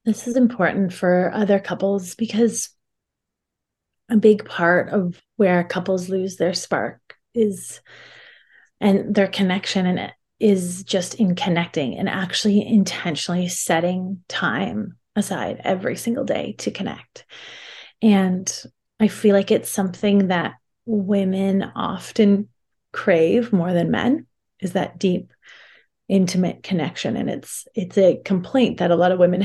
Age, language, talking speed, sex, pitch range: 30-49, English, 130 wpm, female, 185-215 Hz